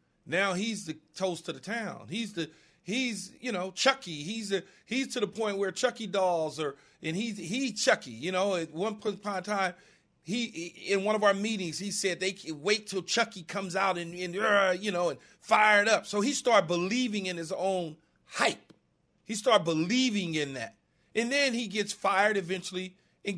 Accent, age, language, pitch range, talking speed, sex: American, 40-59, English, 175-225 Hz, 200 wpm, male